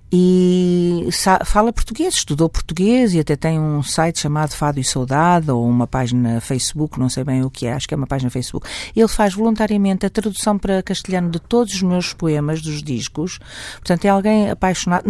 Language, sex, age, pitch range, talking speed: Portuguese, female, 50-69, 150-210 Hz, 190 wpm